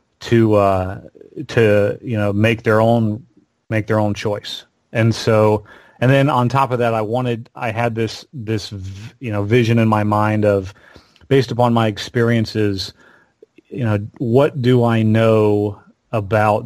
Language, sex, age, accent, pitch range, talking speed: English, male, 40-59, American, 105-120 Hz, 160 wpm